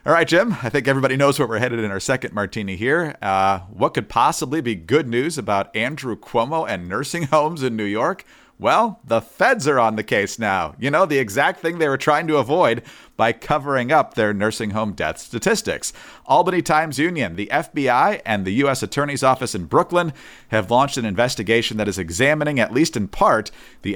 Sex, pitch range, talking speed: male, 105-140 Hz, 205 wpm